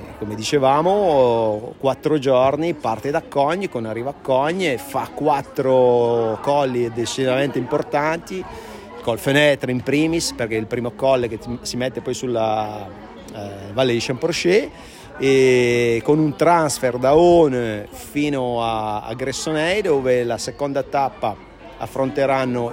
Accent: native